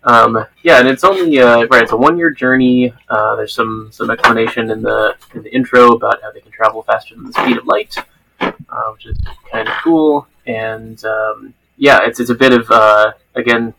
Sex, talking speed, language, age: male, 210 wpm, English, 20-39